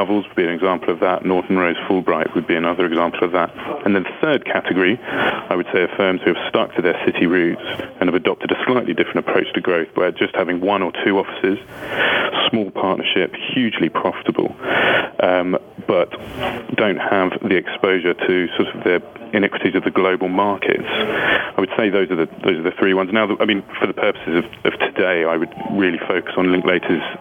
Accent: British